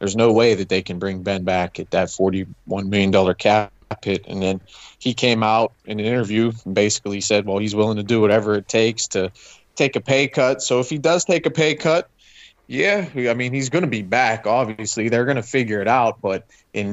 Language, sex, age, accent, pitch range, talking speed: English, male, 20-39, American, 105-125 Hz, 225 wpm